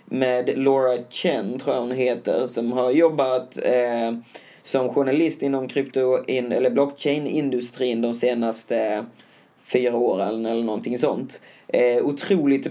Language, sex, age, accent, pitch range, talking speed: English, male, 20-39, Swedish, 120-140 Hz, 115 wpm